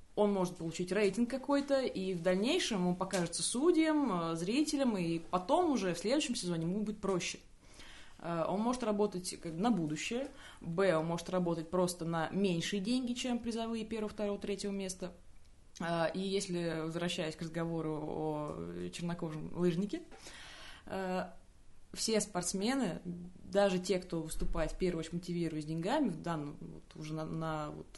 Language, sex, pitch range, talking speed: Russian, female, 165-205 Hz, 140 wpm